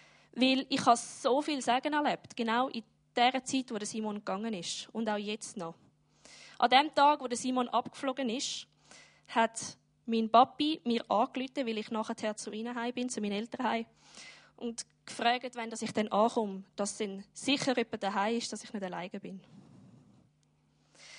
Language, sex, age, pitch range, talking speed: German, female, 20-39, 220-265 Hz, 175 wpm